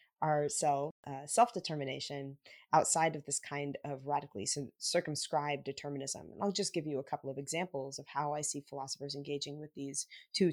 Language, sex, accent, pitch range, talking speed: English, female, American, 145-170 Hz, 175 wpm